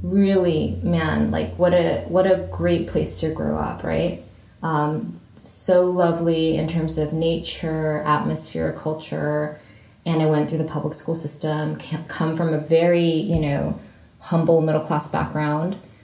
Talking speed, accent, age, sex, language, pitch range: 145 wpm, American, 20-39, female, English, 150-170 Hz